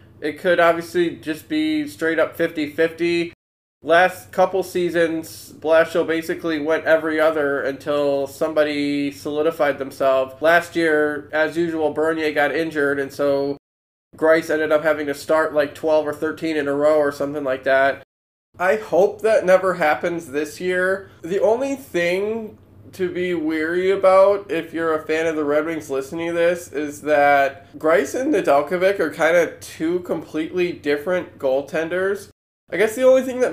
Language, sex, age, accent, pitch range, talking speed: English, male, 20-39, American, 150-175 Hz, 160 wpm